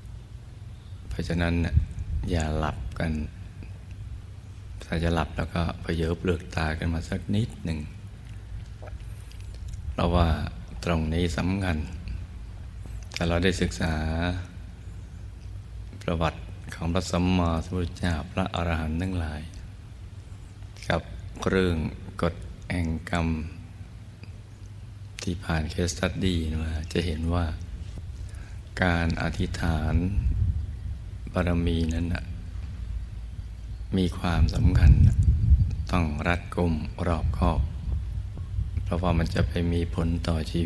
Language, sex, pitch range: Thai, male, 85-95 Hz